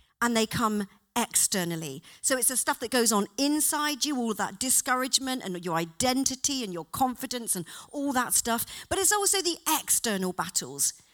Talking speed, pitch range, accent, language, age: 170 wpm, 195-295 Hz, British, English, 40-59